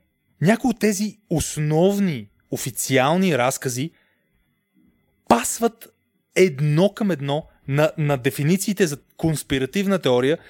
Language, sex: Bulgarian, male